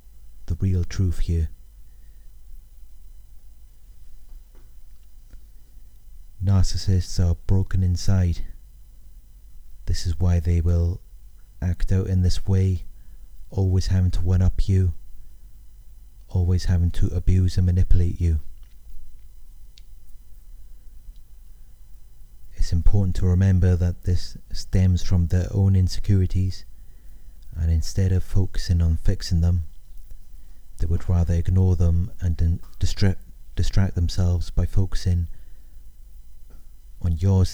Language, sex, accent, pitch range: English, male, British, 85-95 Hz